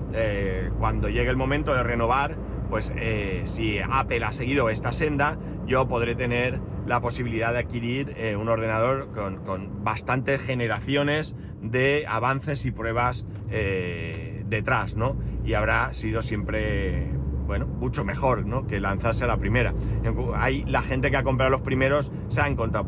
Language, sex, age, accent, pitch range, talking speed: Spanish, male, 30-49, Spanish, 105-130 Hz, 155 wpm